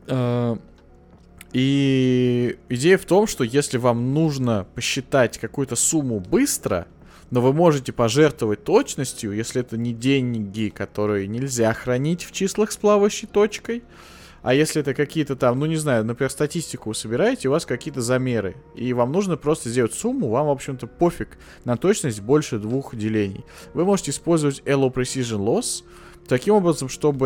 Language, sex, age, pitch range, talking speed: Russian, male, 20-39, 115-160 Hz, 150 wpm